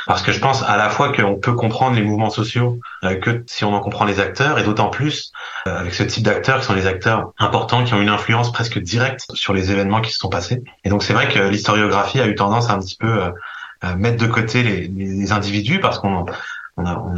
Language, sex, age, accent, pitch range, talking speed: French, male, 30-49, French, 100-115 Hz, 250 wpm